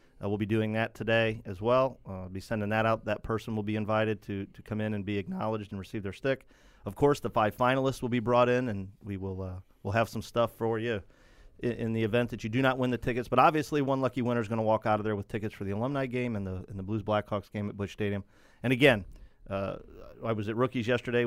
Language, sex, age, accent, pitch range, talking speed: English, male, 40-59, American, 105-120 Hz, 270 wpm